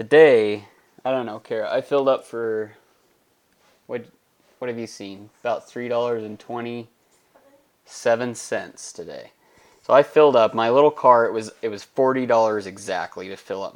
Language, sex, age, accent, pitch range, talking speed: English, male, 20-39, American, 105-130 Hz, 170 wpm